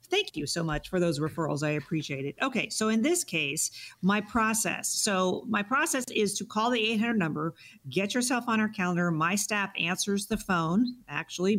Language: English